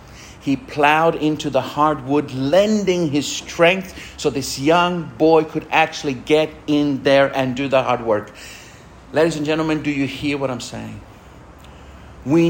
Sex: male